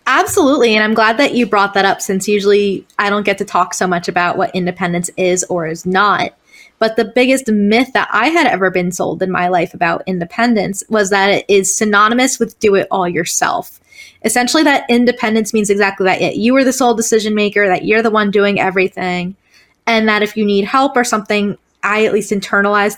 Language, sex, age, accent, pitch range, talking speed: English, female, 20-39, American, 185-230 Hz, 210 wpm